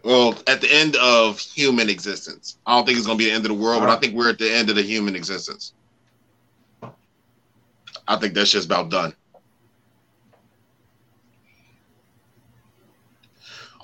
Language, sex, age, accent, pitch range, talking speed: English, male, 30-49, American, 100-115 Hz, 160 wpm